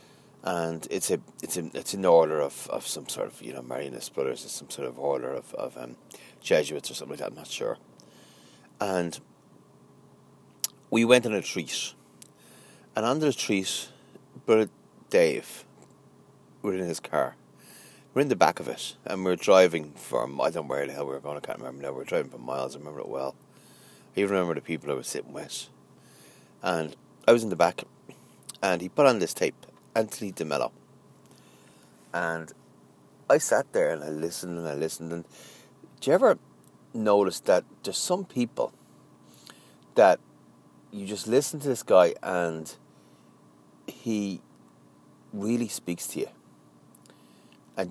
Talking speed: 170 wpm